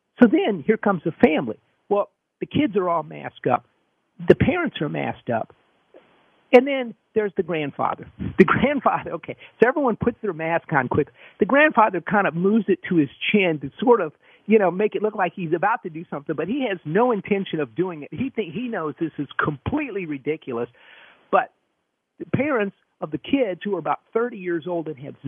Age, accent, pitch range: 50-69, American, 160-220 Hz